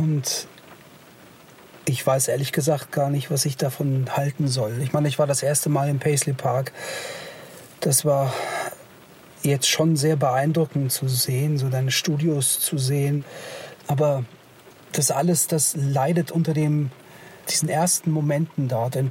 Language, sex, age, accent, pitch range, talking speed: German, male, 40-59, German, 130-155 Hz, 150 wpm